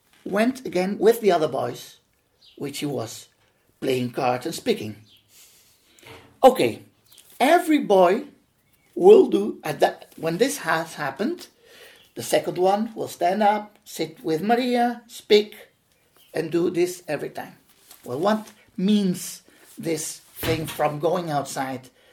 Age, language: 50-69, English